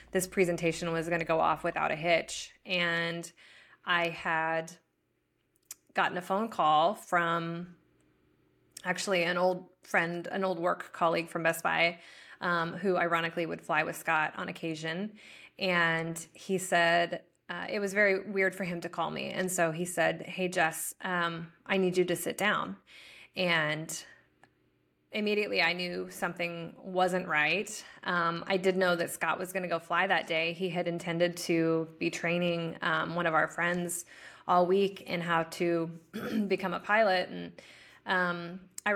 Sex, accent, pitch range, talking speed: female, American, 165-185 Hz, 165 wpm